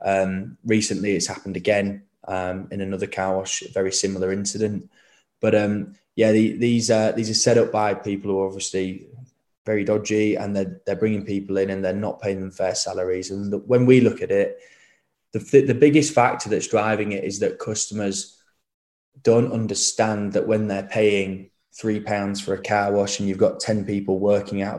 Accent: British